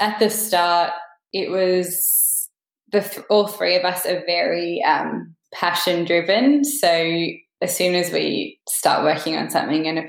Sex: female